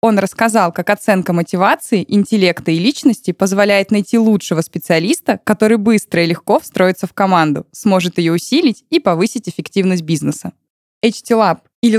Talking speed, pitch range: 140 wpm, 175-220 Hz